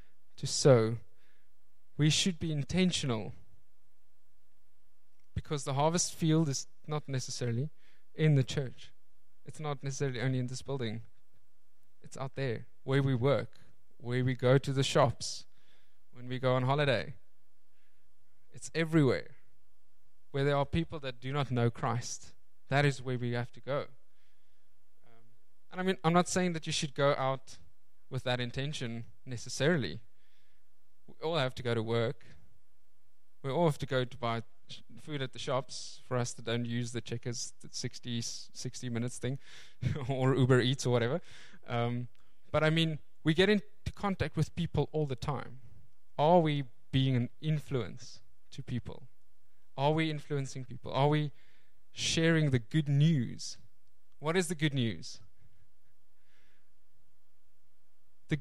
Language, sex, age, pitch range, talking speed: English, male, 20-39, 115-150 Hz, 150 wpm